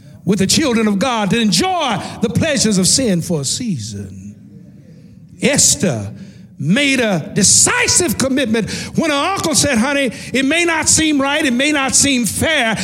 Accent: American